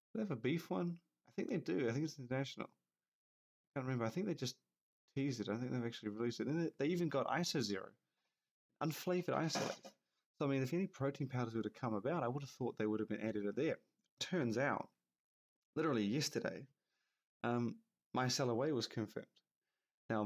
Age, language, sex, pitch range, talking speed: 30-49, English, male, 105-130 Hz, 205 wpm